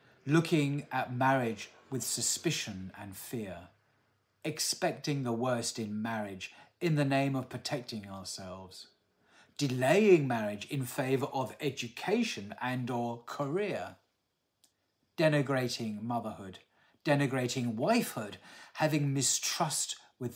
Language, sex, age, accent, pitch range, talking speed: English, male, 40-59, British, 110-145 Hz, 100 wpm